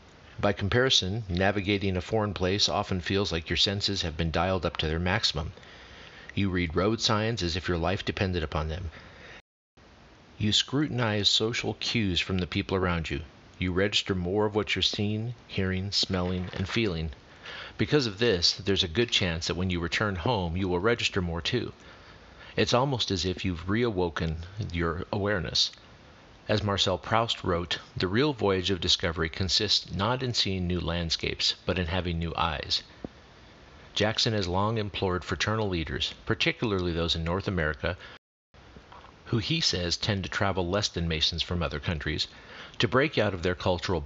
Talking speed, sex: 170 wpm, male